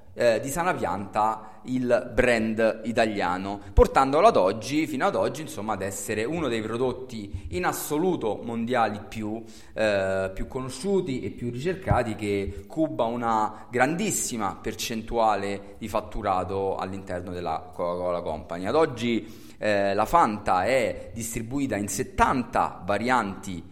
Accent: native